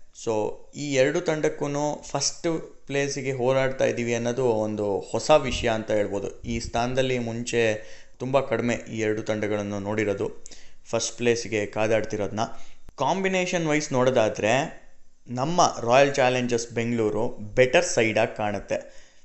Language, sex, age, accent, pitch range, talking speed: Kannada, male, 20-39, native, 110-140 Hz, 110 wpm